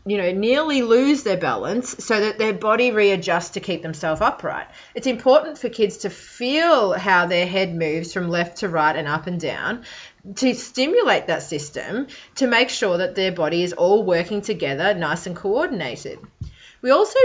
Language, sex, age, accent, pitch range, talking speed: English, female, 30-49, Australian, 175-225 Hz, 180 wpm